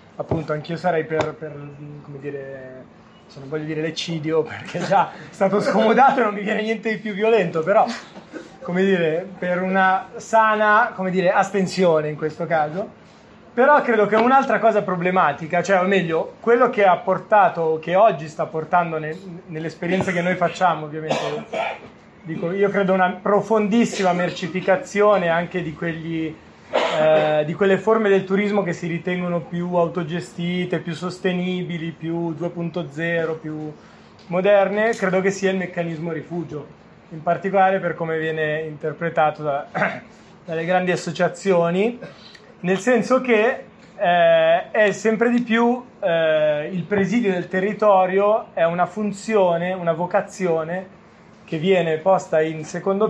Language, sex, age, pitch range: Italian, male, 30-49, 165-205 Hz